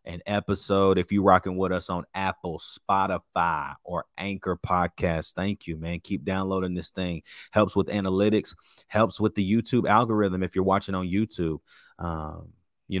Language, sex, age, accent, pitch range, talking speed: English, male, 30-49, American, 95-110 Hz, 160 wpm